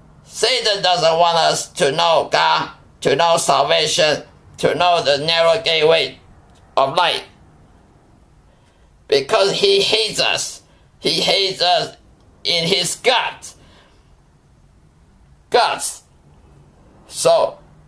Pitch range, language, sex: 145-180 Hz, English, male